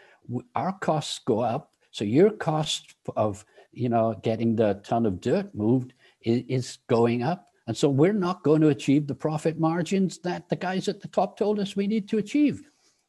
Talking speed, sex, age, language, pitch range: 195 wpm, male, 60-79, English, 110-150 Hz